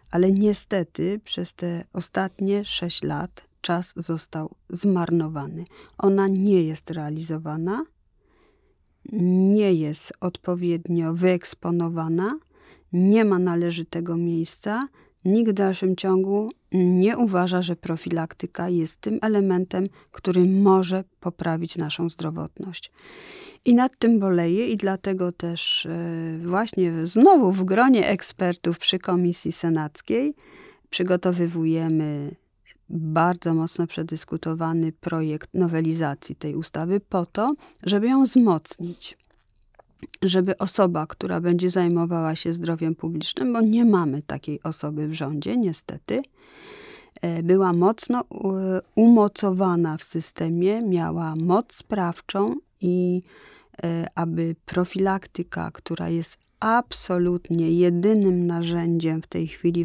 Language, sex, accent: Polish, female, native